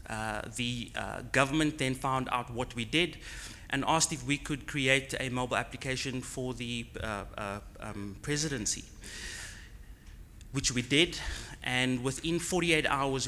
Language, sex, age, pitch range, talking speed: English, male, 30-49, 110-140 Hz, 145 wpm